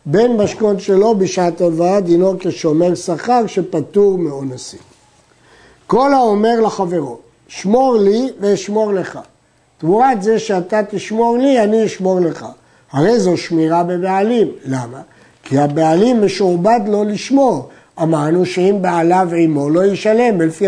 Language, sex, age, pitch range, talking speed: Hebrew, male, 60-79, 165-210 Hz, 120 wpm